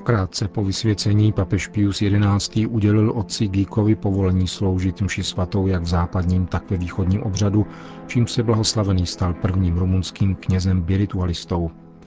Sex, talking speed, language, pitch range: male, 140 wpm, Czech, 90-105 Hz